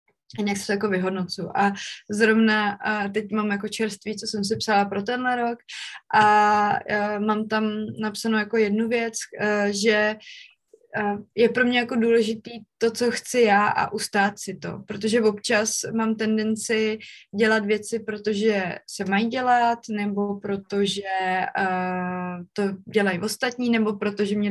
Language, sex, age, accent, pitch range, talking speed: Czech, female, 20-39, native, 205-225 Hz, 145 wpm